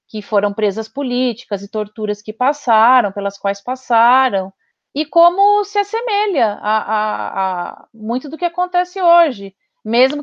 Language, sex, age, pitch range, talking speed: Portuguese, female, 40-59, 210-280 Hz, 140 wpm